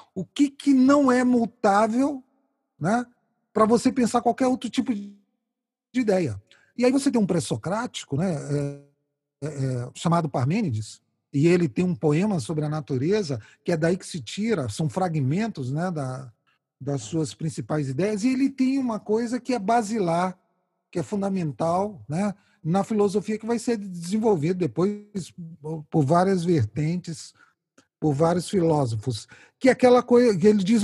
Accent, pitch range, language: Brazilian, 165-230 Hz, Portuguese